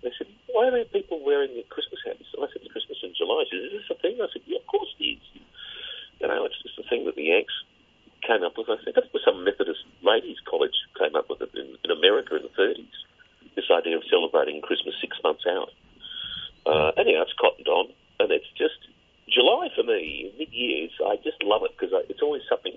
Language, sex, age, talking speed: English, male, 40-59, 230 wpm